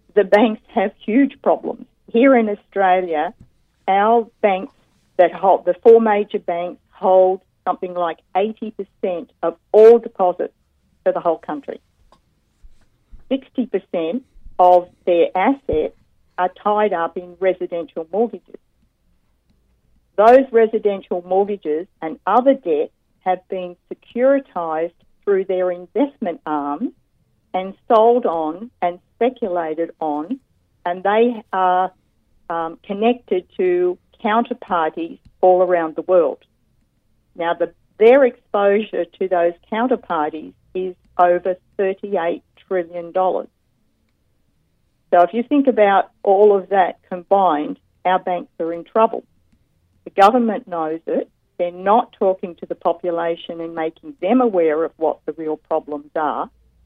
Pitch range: 170-225 Hz